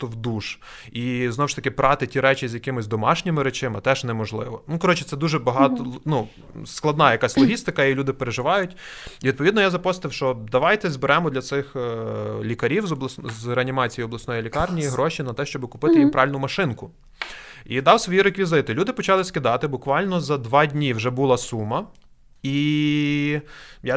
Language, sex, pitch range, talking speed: Ukrainian, male, 125-165 Hz, 170 wpm